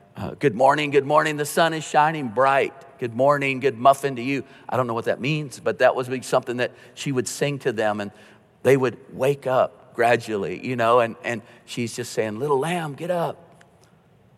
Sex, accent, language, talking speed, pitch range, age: male, American, English, 205 wpm, 115-145 Hz, 50-69